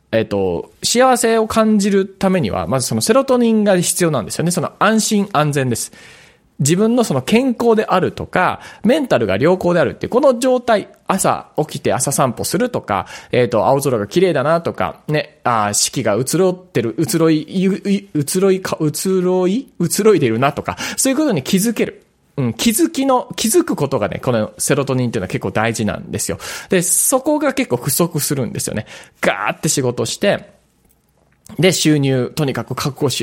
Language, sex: Japanese, male